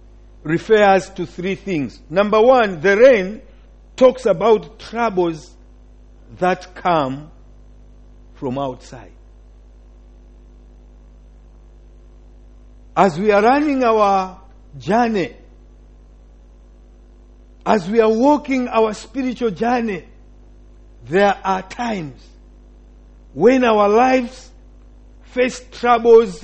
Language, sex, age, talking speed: English, male, 50-69, 80 wpm